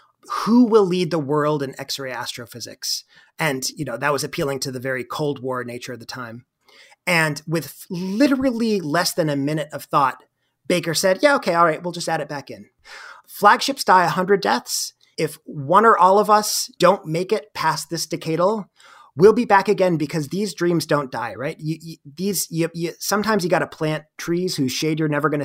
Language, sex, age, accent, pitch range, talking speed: English, male, 30-49, American, 145-180 Hz, 205 wpm